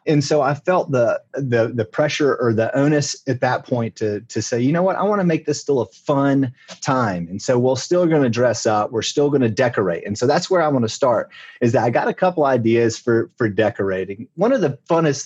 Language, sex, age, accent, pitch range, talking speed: English, male, 30-49, American, 110-140 Hz, 250 wpm